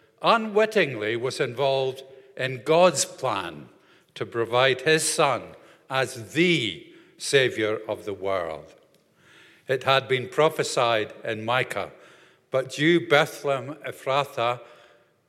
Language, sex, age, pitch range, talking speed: English, male, 50-69, 125-170 Hz, 100 wpm